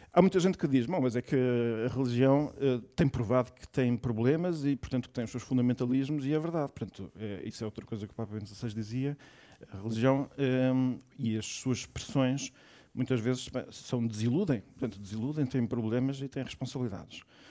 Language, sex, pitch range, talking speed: Portuguese, male, 125-150 Hz, 190 wpm